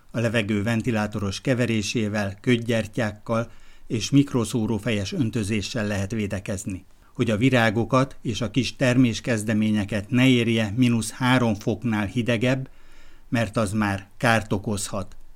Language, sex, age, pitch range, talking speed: Hungarian, male, 60-79, 105-125 Hz, 110 wpm